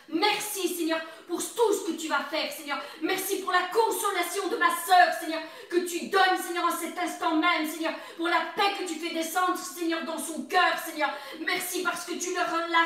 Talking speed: 205 wpm